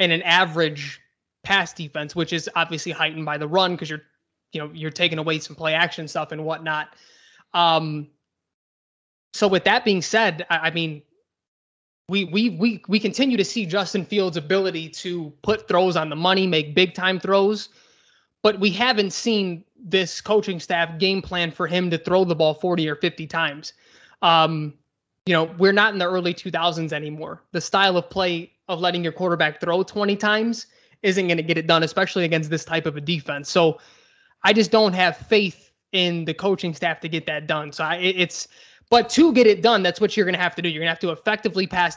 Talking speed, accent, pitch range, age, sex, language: 205 wpm, American, 160-200 Hz, 20-39, male, English